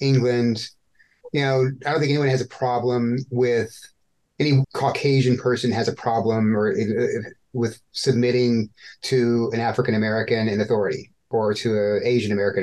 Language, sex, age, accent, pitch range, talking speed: English, male, 30-49, American, 115-135 Hz, 145 wpm